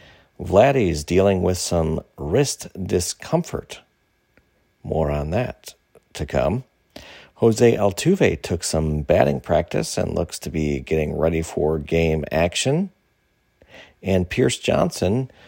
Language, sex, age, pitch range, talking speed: English, male, 50-69, 85-115 Hz, 110 wpm